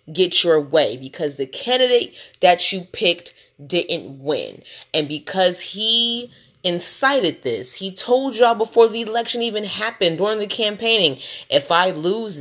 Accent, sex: American, female